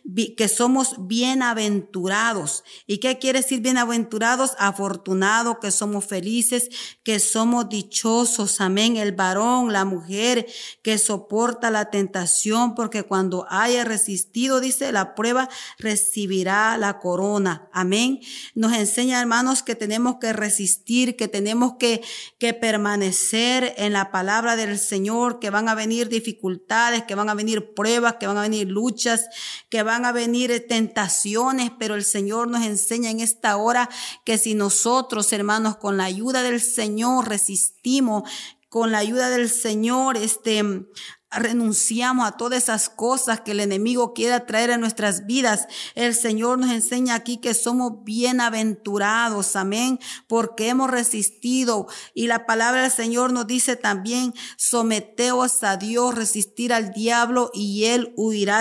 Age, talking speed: 40-59, 140 wpm